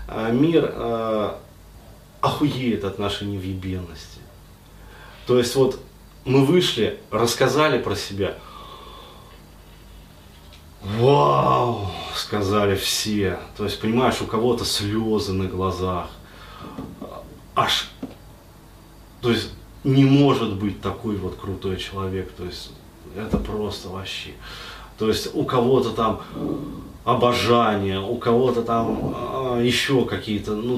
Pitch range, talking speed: 100-125 Hz, 100 wpm